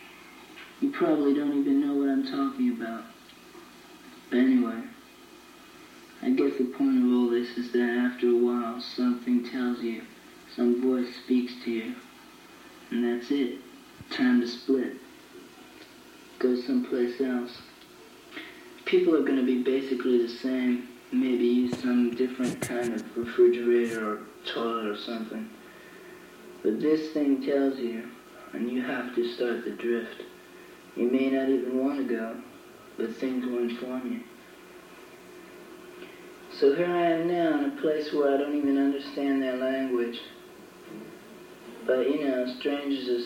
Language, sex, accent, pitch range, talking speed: English, male, American, 120-160 Hz, 140 wpm